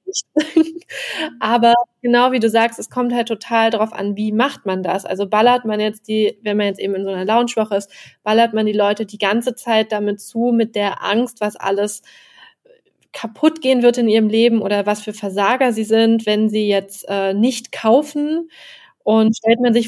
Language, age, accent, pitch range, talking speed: German, 20-39, German, 195-225 Hz, 195 wpm